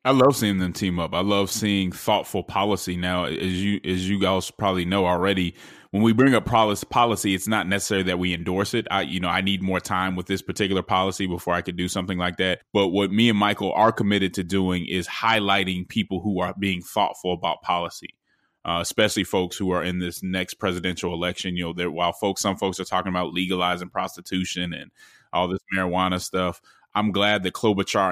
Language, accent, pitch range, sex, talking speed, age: English, American, 90-105 Hz, male, 210 wpm, 20-39